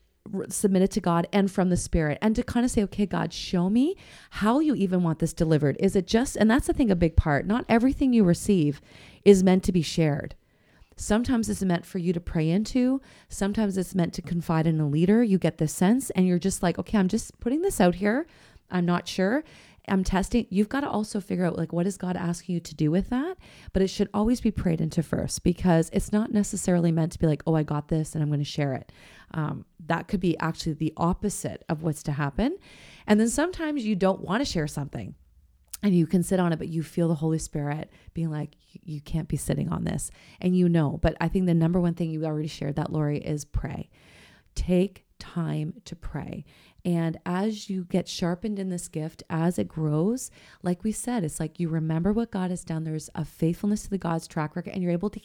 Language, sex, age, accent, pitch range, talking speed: English, female, 30-49, American, 160-205 Hz, 230 wpm